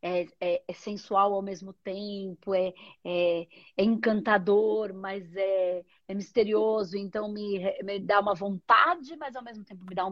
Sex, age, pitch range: female, 40-59, 195-255 Hz